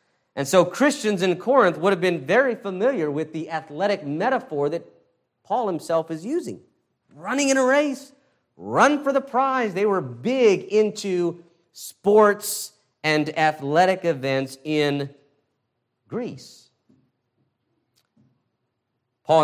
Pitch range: 130-195 Hz